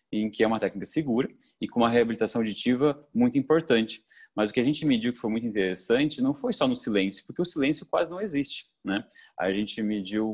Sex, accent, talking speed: male, Brazilian, 220 wpm